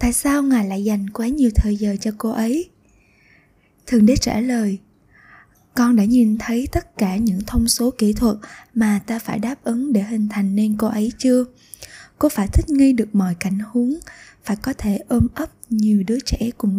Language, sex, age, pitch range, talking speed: Vietnamese, female, 20-39, 205-250 Hz, 200 wpm